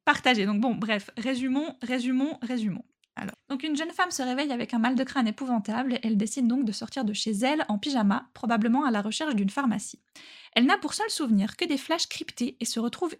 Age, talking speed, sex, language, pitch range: 10-29, 220 wpm, female, French, 210-275 Hz